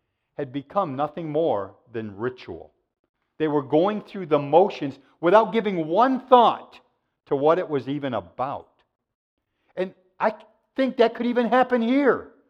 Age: 50-69